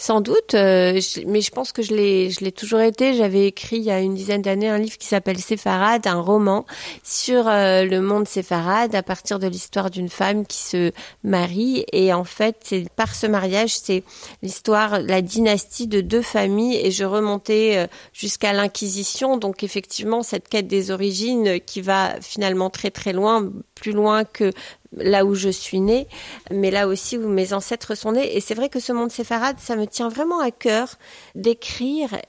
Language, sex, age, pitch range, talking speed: French, female, 40-59, 185-225 Hz, 190 wpm